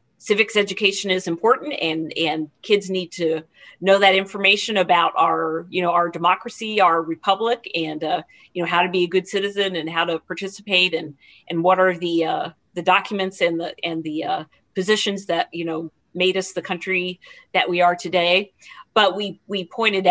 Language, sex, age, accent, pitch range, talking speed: English, female, 40-59, American, 165-195 Hz, 190 wpm